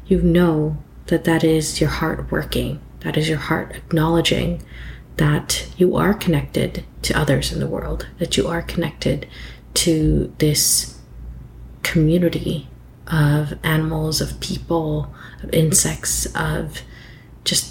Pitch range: 150-175 Hz